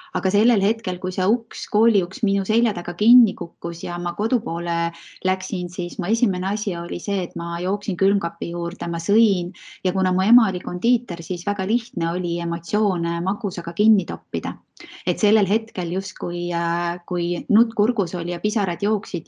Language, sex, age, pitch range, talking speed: English, female, 20-39, 175-205 Hz, 170 wpm